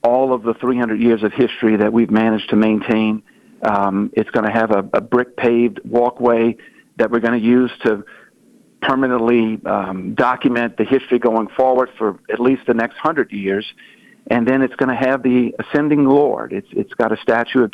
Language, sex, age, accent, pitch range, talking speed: English, male, 50-69, American, 110-125 Hz, 190 wpm